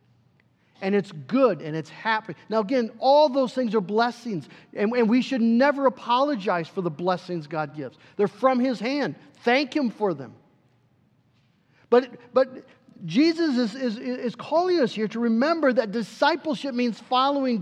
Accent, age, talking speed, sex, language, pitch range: American, 50-69, 160 wpm, male, English, 180-255 Hz